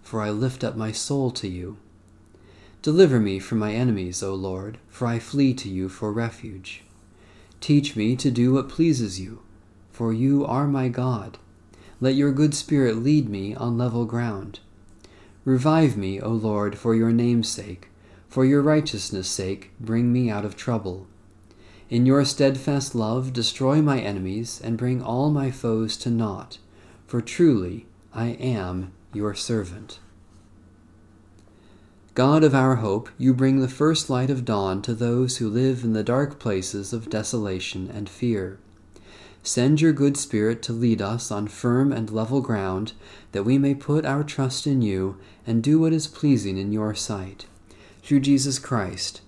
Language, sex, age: English, male, 40-59